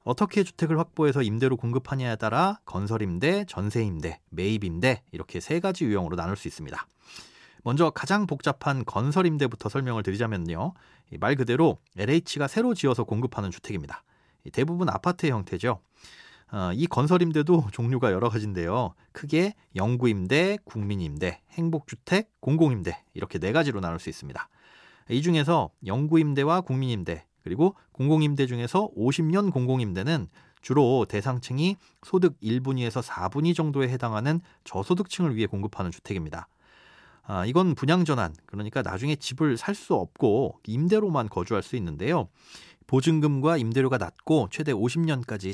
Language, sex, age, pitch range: Korean, male, 30-49, 105-160 Hz